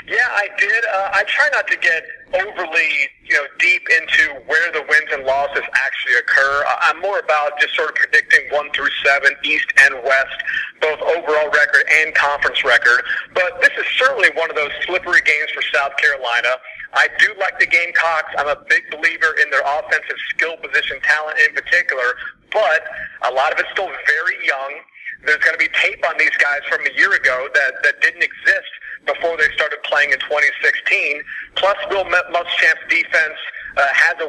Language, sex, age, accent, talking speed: English, male, 40-59, American, 185 wpm